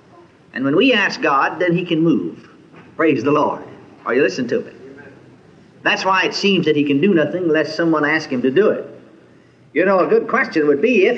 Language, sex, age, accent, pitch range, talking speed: English, male, 60-79, American, 175-265 Hz, 220 wpm